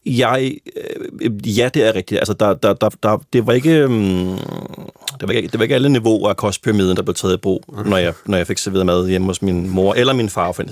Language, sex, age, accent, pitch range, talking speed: Danish, male, 30-49, native, 95-120 Hz, 185 wpm